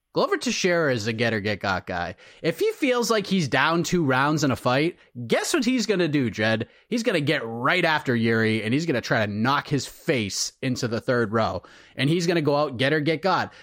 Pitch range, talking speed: 120-170 Hz, 225 wpm